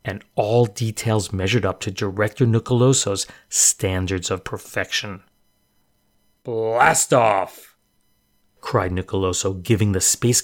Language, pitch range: English, 100-125 Hz